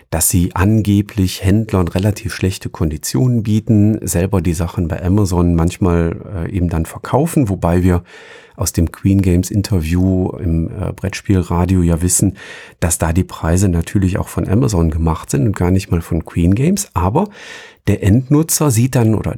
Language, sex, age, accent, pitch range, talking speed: German, male, 40-59, German, 90-105 Hz, 160 wpm